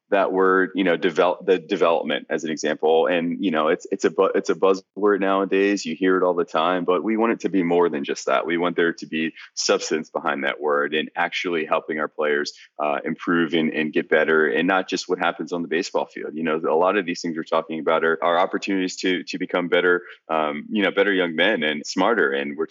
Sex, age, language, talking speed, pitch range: male, 20-39, English, 245 wpm, 80-95 Hz